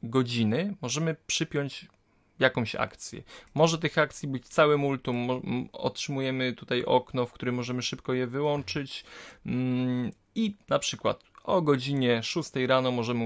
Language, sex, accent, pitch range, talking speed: Polish, male, native, 120-140 Hz, 125 wpm